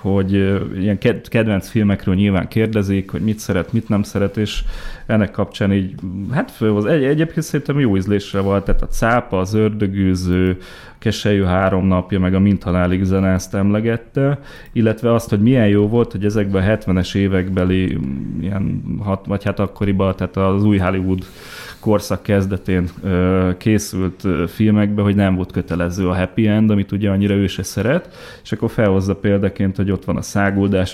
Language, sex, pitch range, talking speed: Hungarian, male, 95-110 Hz, 160 wpm